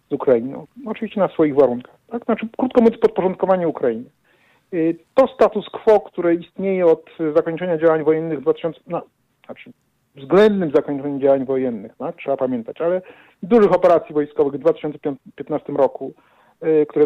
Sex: male